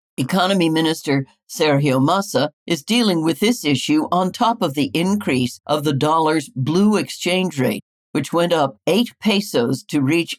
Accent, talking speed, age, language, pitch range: American, 155 wpm, 60-79, English, 140-185 Hz